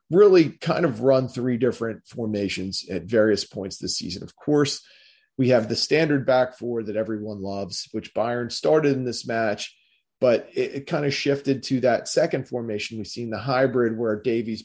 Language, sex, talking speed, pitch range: English, male, 185 wpm, 110-125 Hz